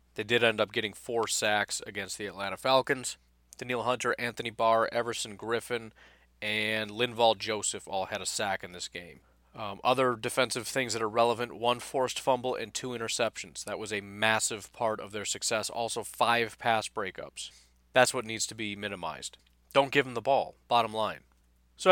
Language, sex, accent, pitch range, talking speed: English, male, American, 105-135 Hz, 180 wpm